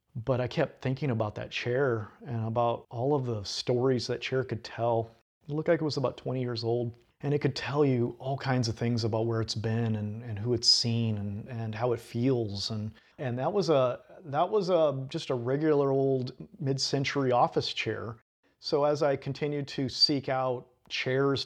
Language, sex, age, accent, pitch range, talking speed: English, male, 40-59, American, 115-140 Hz, 200 wpm